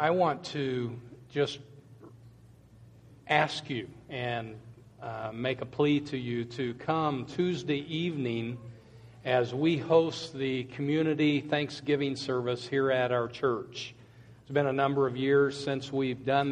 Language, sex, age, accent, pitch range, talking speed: English, male, 50-69, American, 120-135 Hz, 135 wpm